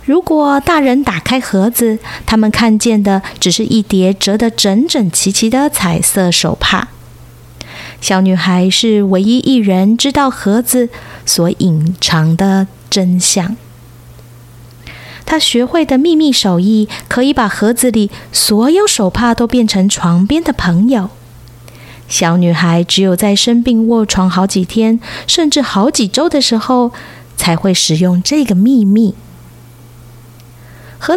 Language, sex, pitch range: Chinese, female, 180-250 Hz